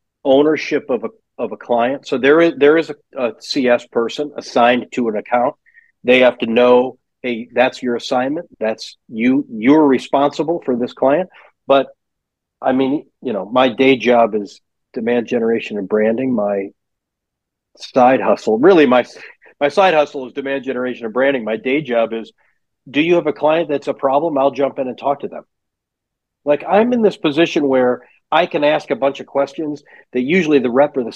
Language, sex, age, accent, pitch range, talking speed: English, male, 40-59, American, 120-155 Hz, 190 wpm